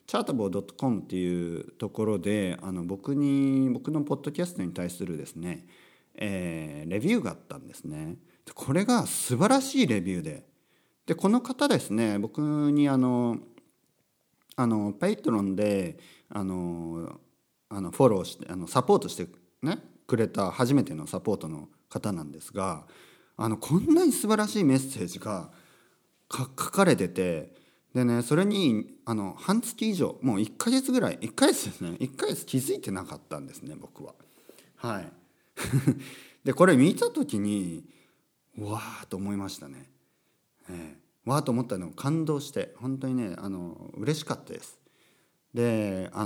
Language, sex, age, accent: Japanese, male, 40-59, native